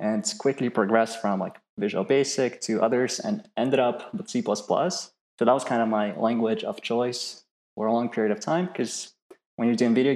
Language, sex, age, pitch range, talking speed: English, male, 20-39, 110-140 Hz, 200 wpm